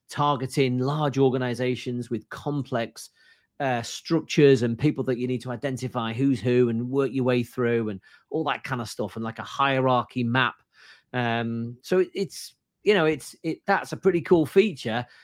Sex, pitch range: male, 115-140 Hz